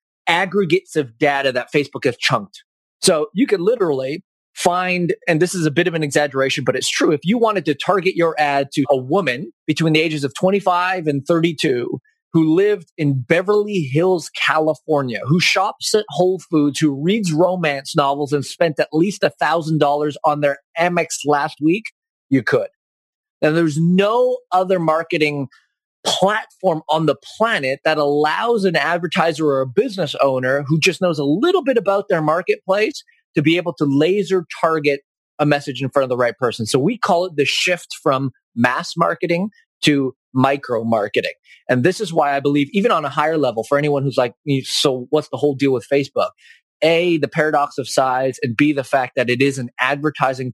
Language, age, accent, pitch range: English, 30-49, American, 140-180 Hz